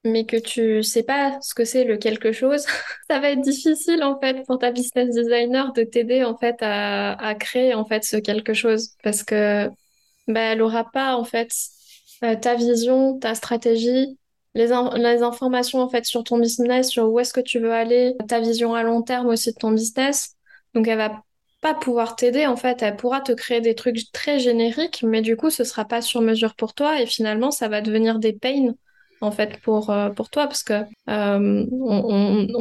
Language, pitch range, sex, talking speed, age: French, 220-255 Hz, female, 210 wpm, 20-39